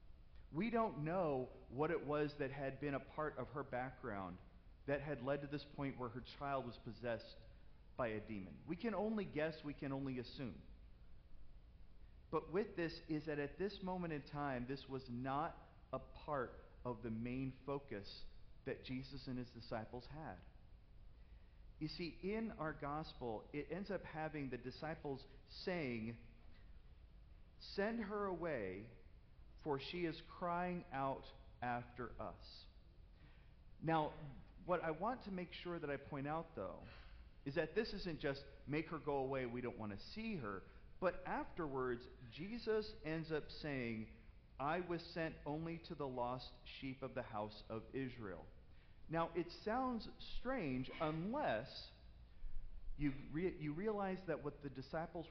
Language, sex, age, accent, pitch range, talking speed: English, male, 40-59, American, 120-165 Hz, 155 wpm